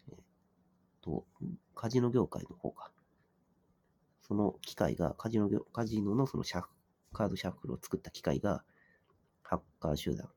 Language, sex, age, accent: Japanese, male, 40-59, native